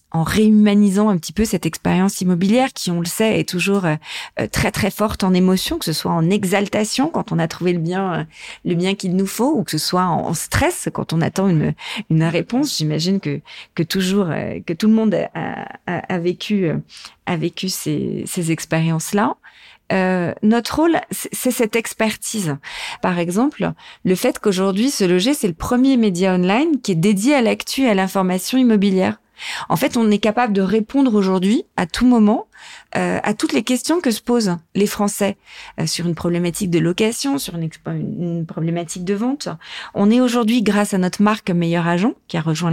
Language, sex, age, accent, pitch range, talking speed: French, female, 40-59, French, 180-235 Hz, 195 wpm